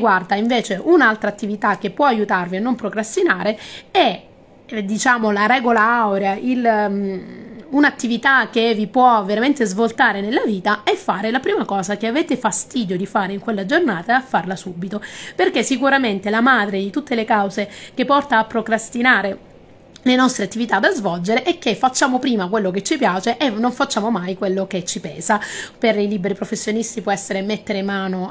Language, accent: Italian, native